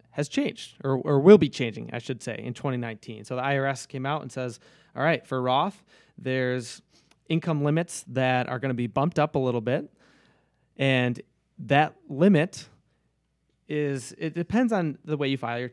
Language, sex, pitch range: English, male, 125-150 Hz